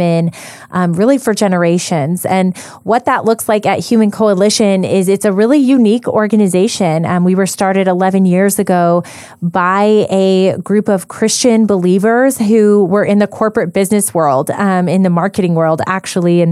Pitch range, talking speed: 180-210 Hz, 165 wpm